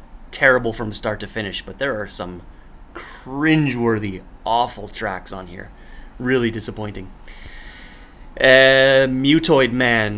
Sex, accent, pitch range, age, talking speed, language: male, American, 100-120 Hz, 30-49, 110 wpm, English